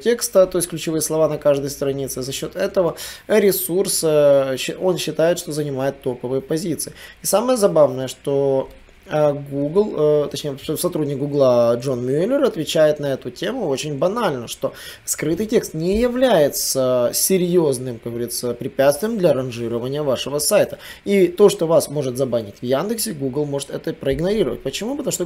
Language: Russian